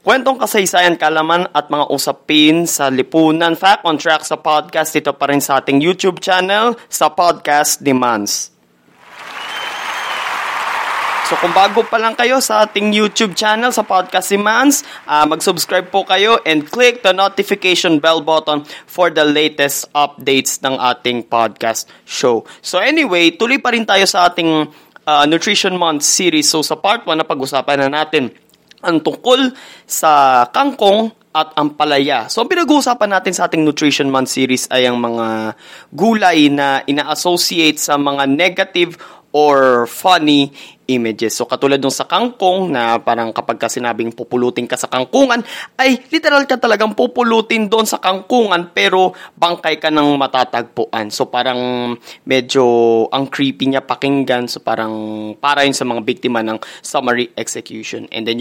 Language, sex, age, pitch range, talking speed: Filipino, male, 20-39, 135-195 Hz, 150 wpm